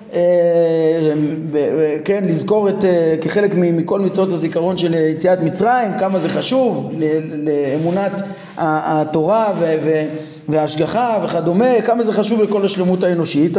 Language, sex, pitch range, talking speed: Hebrew, male, 165-215 Hz, 100 wpm